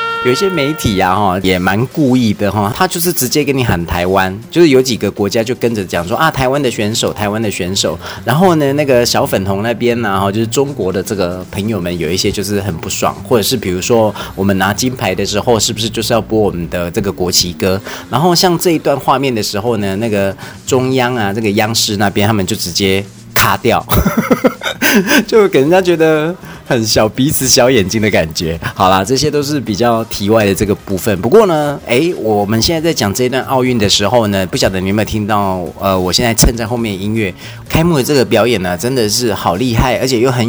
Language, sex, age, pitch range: Chinese, male, 30-49, 95-130 Hz